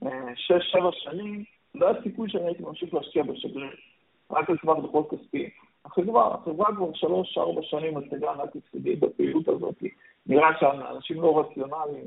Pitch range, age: 140-200 Hz, 50-69